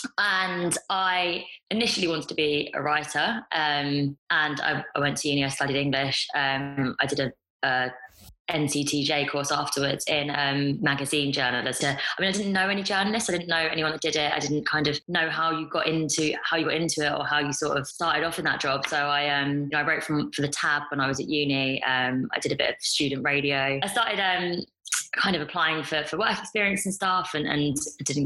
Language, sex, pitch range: English, female, 135-155 Hz